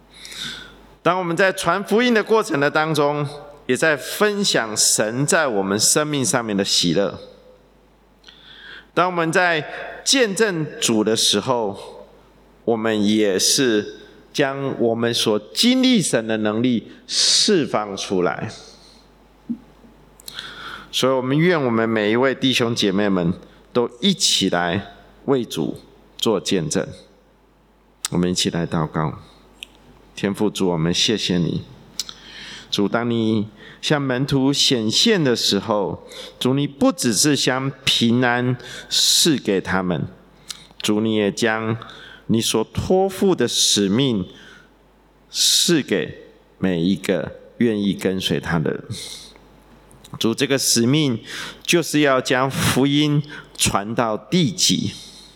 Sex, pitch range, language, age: male, 110-160 Hz, English, 50-69